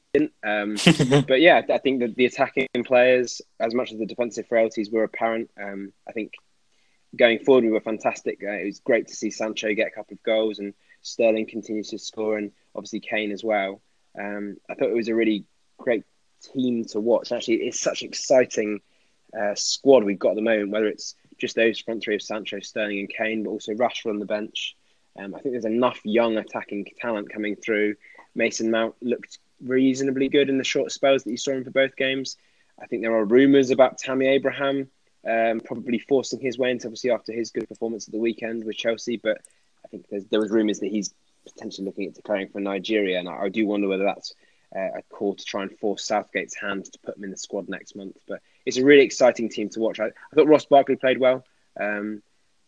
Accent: British